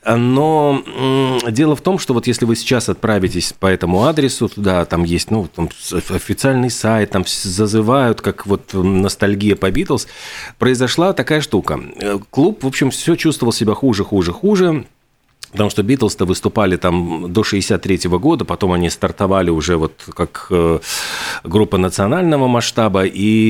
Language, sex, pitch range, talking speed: Russian, male, 100-135 Hz, 145 wpm